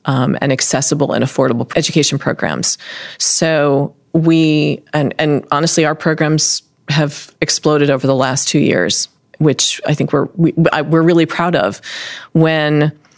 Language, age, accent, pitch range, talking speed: English, 40-59, American, 145-180 Hz, 140 wpm